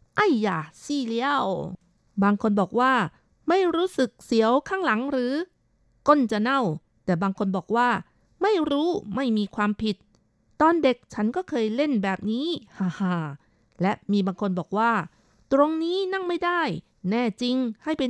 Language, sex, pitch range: Thai, female, 195-265 Hz